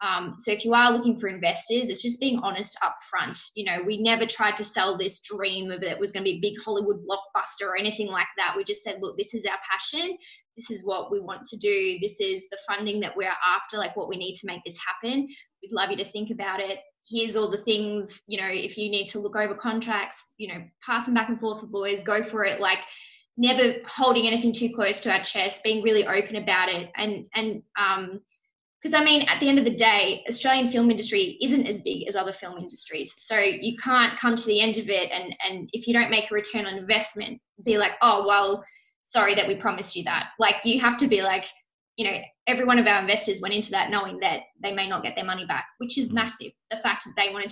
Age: 10-29